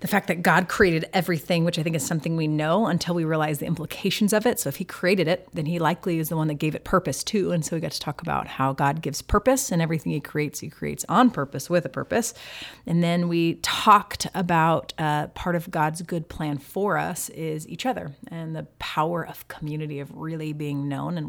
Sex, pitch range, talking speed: female, 145-180 Hz, 235 wpm